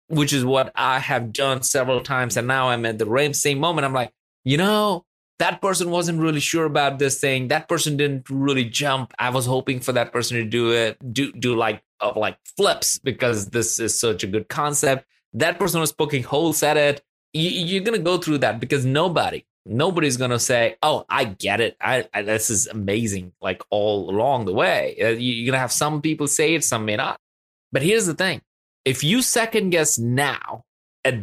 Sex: male